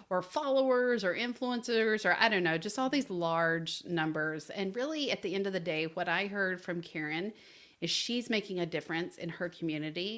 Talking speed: 200 wpm